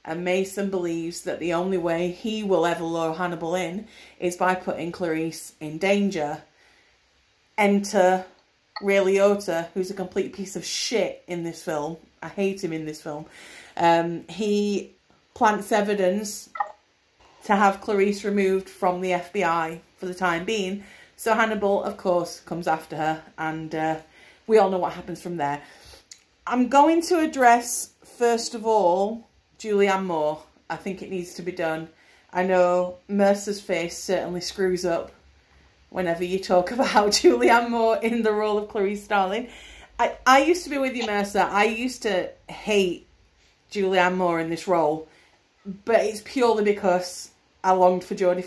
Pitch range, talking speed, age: 170-205 Hz, 155 wpm, 30-49